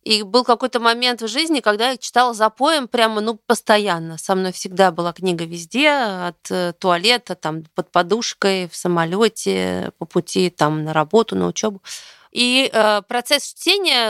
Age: 30-49